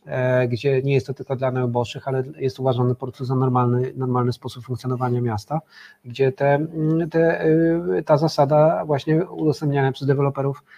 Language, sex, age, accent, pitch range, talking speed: Polish, male, 40-59, native, 130-150 Hz, 140 wpm